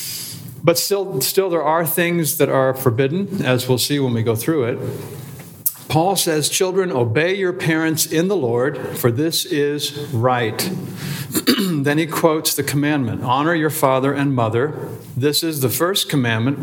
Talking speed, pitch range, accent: 160 wpm, 130-160 Hz, American